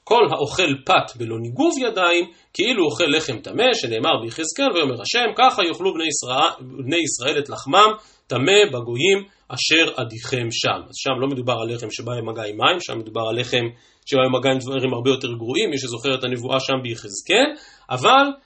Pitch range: 130-210 Hz